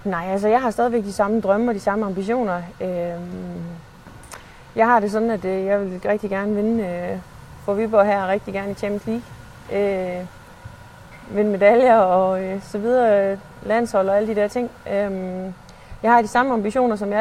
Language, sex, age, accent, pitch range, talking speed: Danish, female, 30-49, native, 185-215 Hz, 185 wpm